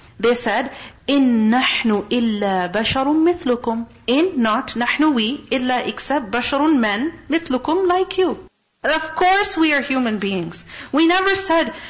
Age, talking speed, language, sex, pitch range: 40-59, 120 wpm, English, female, 220-290 Hz